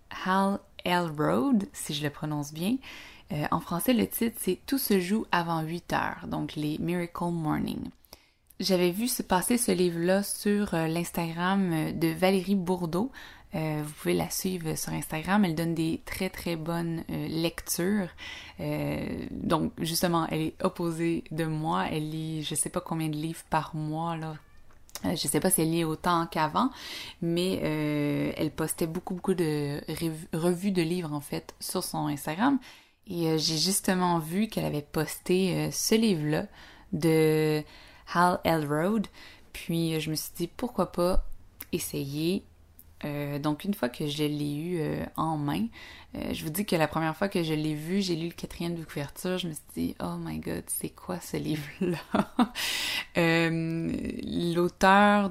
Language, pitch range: French, 155-190 Hz